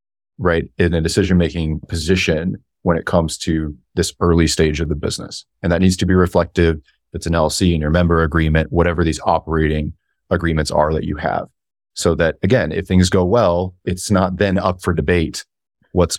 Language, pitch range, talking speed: English, 80-90 Hz, 185 wpm